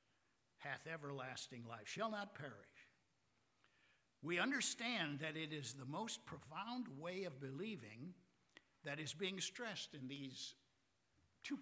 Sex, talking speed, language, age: male, 125 wpm, English, 60-79